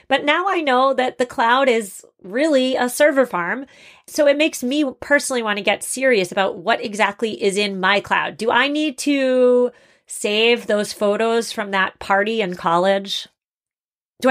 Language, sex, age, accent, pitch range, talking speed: English, female, 30-49, American, 190-260 Hz, 170 wpm